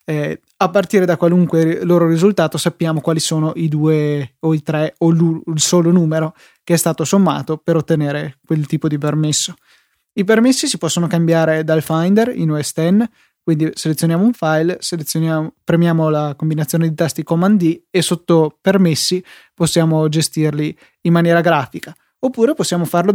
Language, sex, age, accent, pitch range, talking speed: Italian, male, 20-39, native, 155-185 Hz, 155 wpm